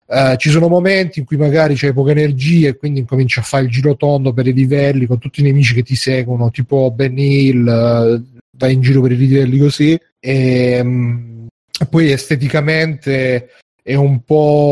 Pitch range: 120-145 Hz